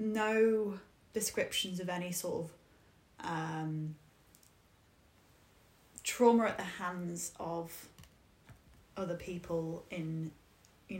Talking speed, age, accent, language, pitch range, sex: 85 wpm, 10-29, British, English, 165-190 Hz, female